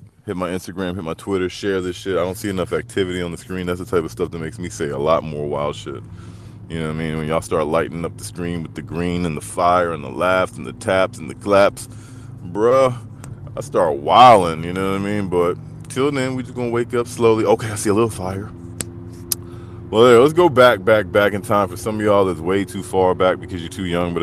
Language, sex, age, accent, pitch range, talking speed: English, male, 20-39, American, 90-115 Hz, 260 wpm